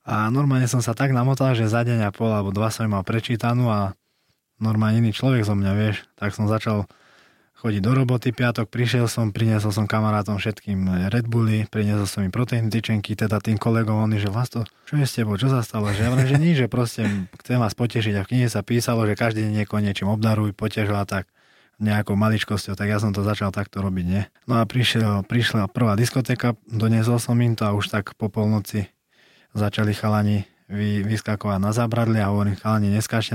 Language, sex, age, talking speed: Slovak, male, 20-39, 205 wpm